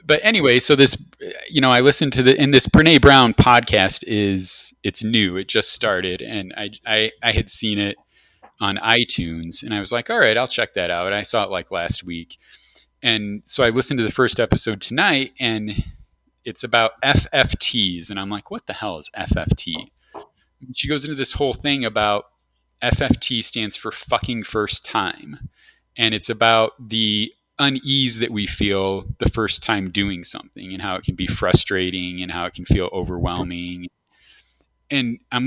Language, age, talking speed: English, 30-49, 180 wpm